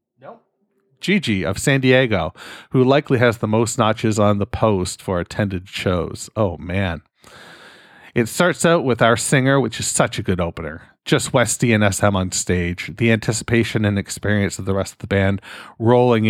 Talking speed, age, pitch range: 175 wpm, 40-59, 100-120 Hz